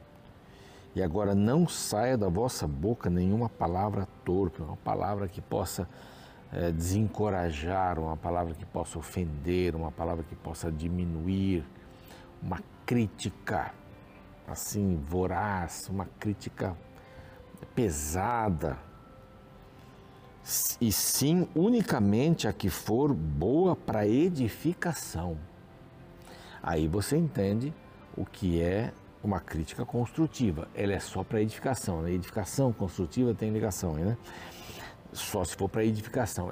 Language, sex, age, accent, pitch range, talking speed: Portuguese, male, 60-79, Brazilian, 85-105 Hz, 110 wpm